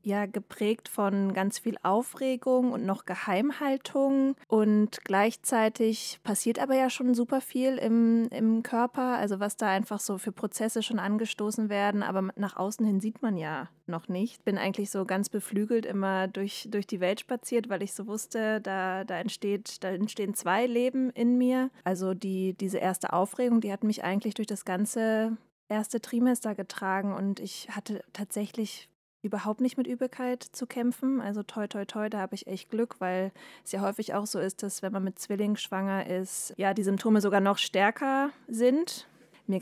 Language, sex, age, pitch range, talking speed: German, female, 20-39, 190-230 Hz, 180 wpm